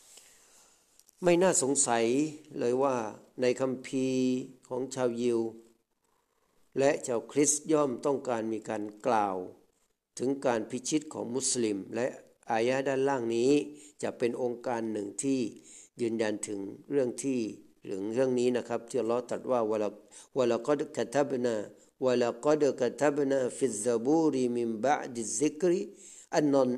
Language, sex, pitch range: Thai, male, 115-140 Hz